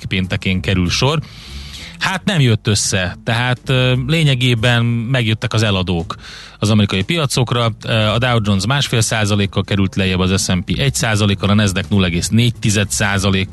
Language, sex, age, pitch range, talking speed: Hungarian, male, 30-49, 100-130 Hz, 125 wpm